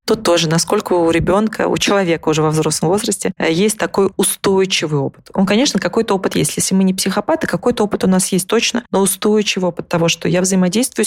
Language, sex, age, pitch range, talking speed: Russian, female, 20-39, 175-215 Hz, 200 wpm